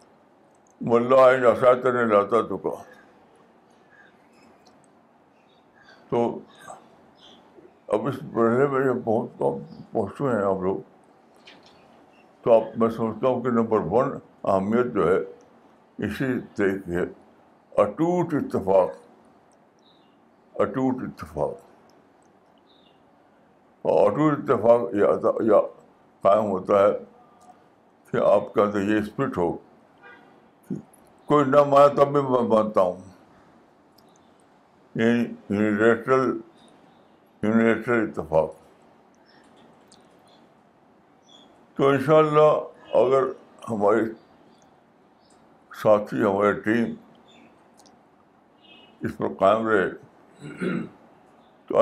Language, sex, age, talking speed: Urdu, male, 60-79, 80 wpm